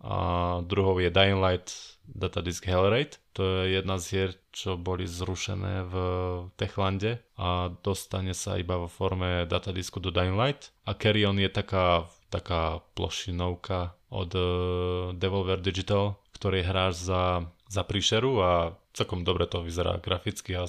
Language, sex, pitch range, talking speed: Slovak, male, 90-100 Hz, 135 wpm